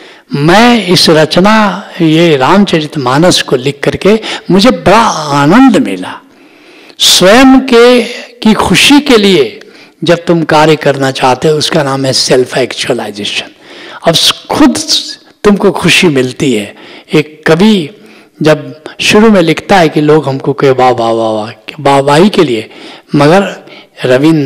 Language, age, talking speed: Hindi, 60-79, 130 wpm